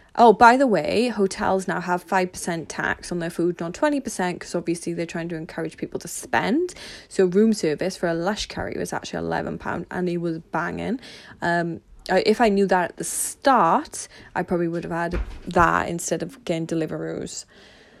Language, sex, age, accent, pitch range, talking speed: English, female, 20-39, British, 180-245 Hz, 185 wpm